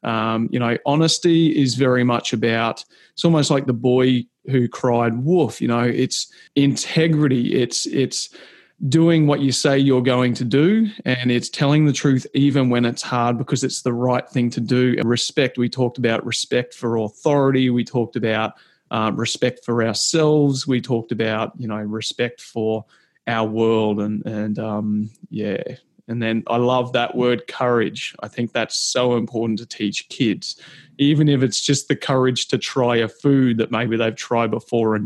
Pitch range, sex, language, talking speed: 115-135 Hz, male, English, 180 wpm